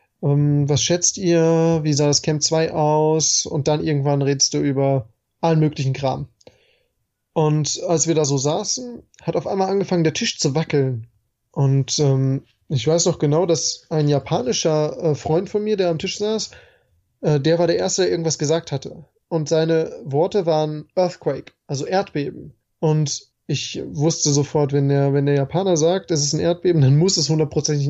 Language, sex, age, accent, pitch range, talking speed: German, male, 20-39, German, 145-170 Hz, 175 wpm